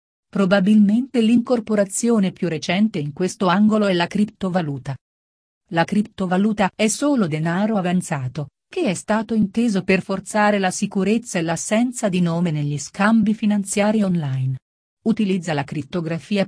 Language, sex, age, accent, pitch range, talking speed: Italian, female, 40-59, native, 165-210 Hz, 125 wpm